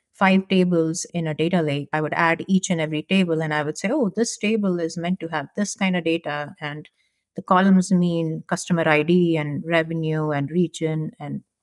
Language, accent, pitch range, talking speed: English, Indian, 160-195 Hz, 200 wpm